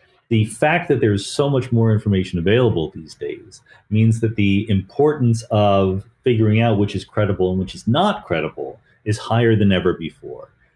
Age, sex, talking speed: 30-49, male, 175 wpm